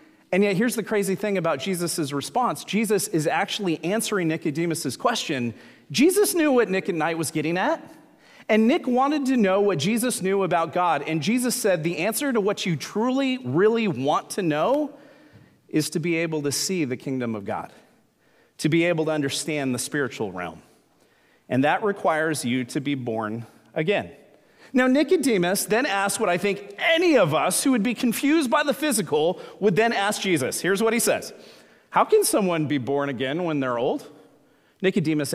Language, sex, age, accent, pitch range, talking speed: English, male, 40-59, American, 160-245 Hz, 185 wpm